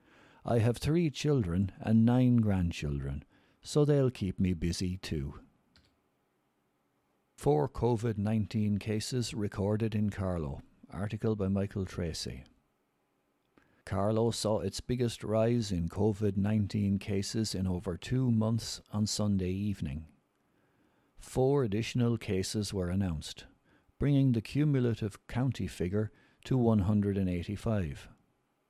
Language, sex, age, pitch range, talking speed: English, male, 60-79, 90-120 Hz, 105 wpm